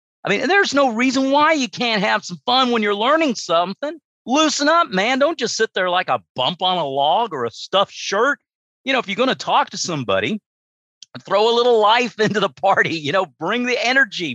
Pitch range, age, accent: 130-210 Hz, 50-69, American